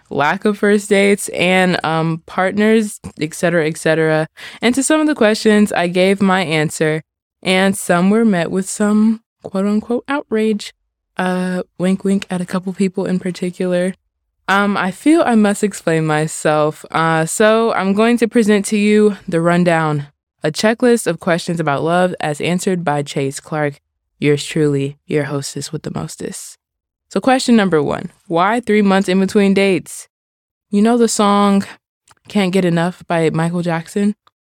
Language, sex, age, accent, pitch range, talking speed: English, female, 20-39, American, 155-200 Hz, 160 wpm